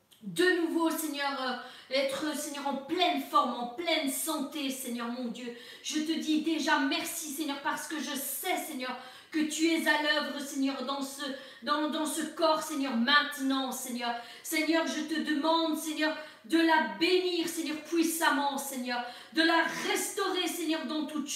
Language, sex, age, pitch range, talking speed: French, female, 40-59, 270-320 Hz, 155 wpm